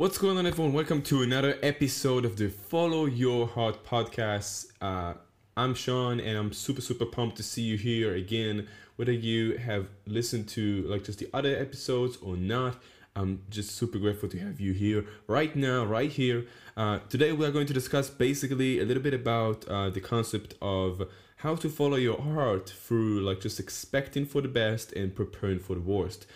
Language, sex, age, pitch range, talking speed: English, male, 10-29, 95-125 Hz, 190 wpm